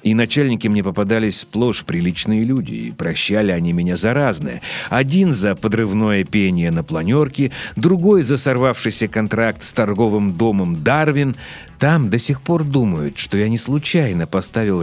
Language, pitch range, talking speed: Russian, 100-145 Hz, 150 wpm